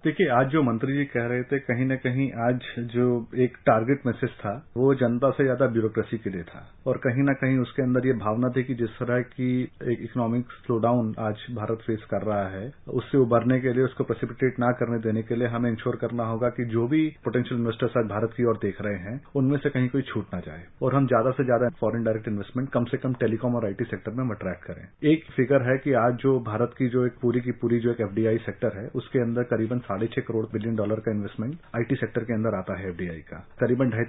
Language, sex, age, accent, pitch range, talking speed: Hindi, male, 40-59, native, 110-130 Hz, 240 wpm